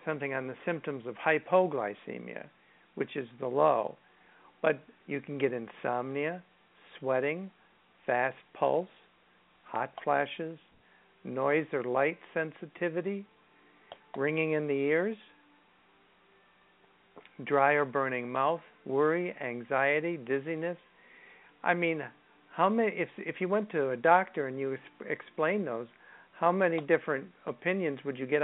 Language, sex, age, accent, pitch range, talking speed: English, male, 60-79, American, 135-170 Hz, 120 wpm